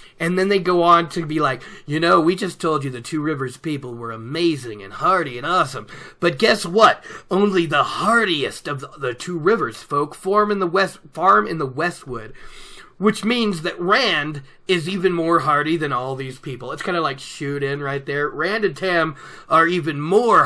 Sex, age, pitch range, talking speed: male, 30-49, 135-180 Hz, 205 wpm